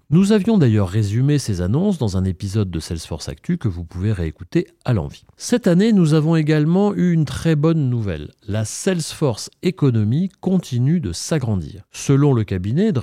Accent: French